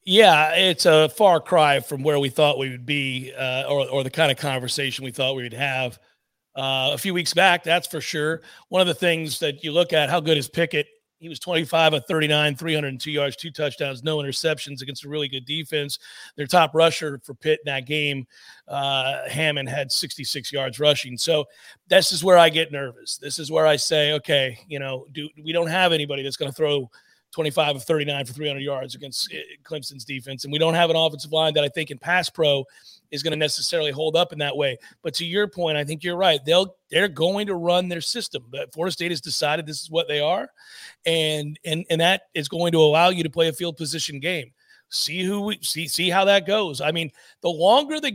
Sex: male